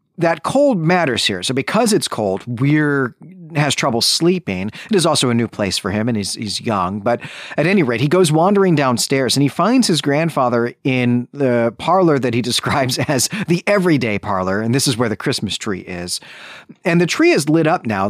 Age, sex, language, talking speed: 40-59, male, English, 205 wpm